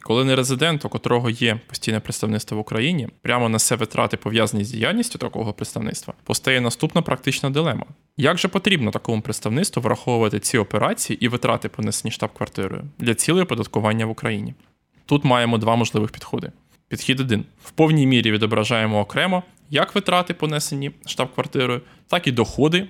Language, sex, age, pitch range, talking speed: Ukrainian, male, 20-39, 115-150 Hz, 155 wpm